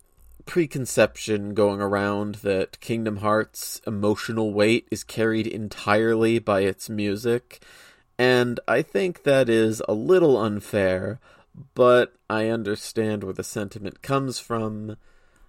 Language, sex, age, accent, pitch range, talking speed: English, male, 30-49, American, 100-115 Hz, 115 wpm